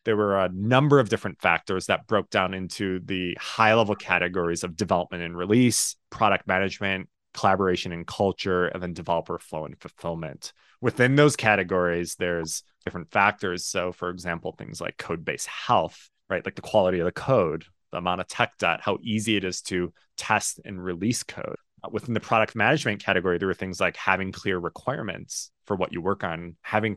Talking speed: 180 wpm